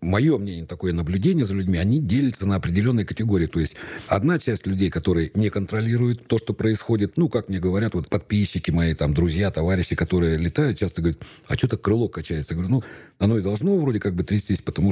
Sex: male